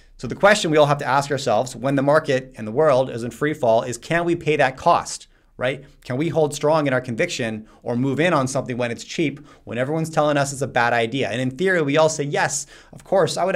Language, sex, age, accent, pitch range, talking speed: English, male, 30-49, American, 125-155 Hz, 265 wpm